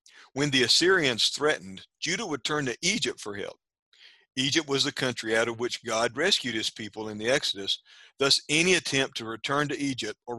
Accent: American